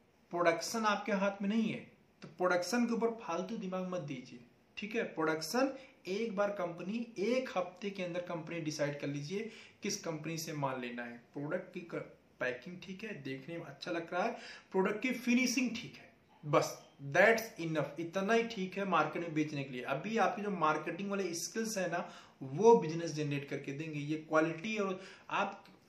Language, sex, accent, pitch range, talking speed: Hindi, male, native, 155-210 Hz, 145 wpm